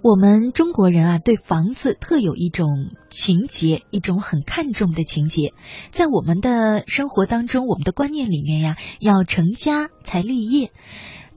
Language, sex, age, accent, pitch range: Chinese, female, 20-39, native, 165-230 Hz